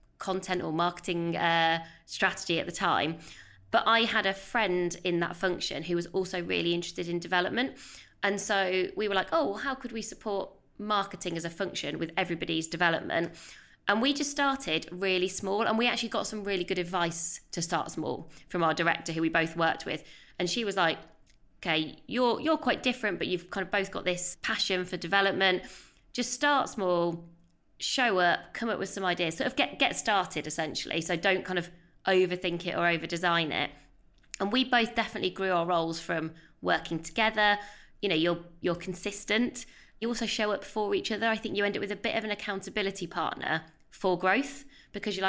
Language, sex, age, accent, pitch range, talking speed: English, female, 20-39, British, 170-210 Hz, 195 wpm